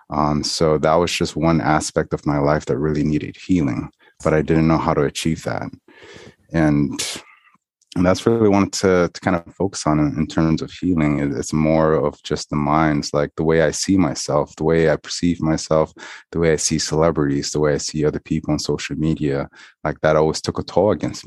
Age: 30-49